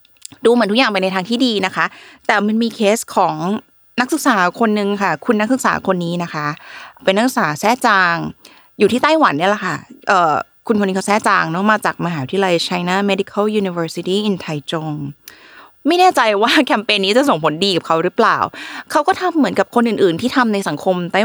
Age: 20-39